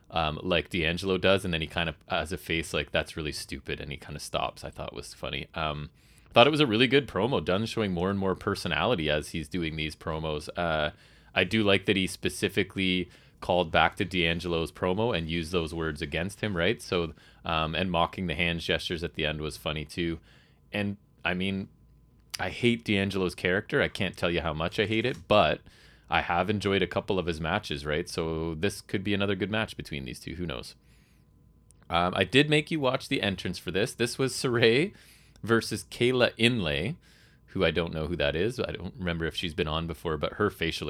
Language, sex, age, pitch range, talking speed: English, male, 30-49, 85-110 Hz, 215 wpm